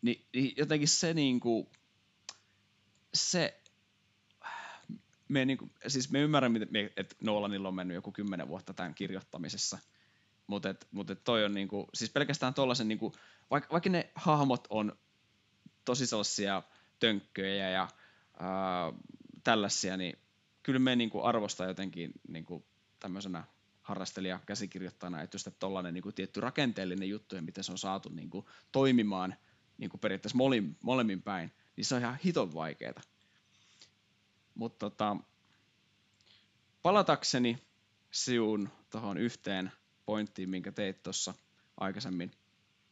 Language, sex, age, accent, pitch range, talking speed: Finnish, male, 20-39, native, 95-125 Hz, 115 wpm